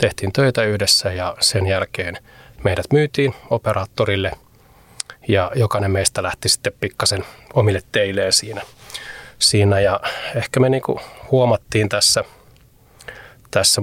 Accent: native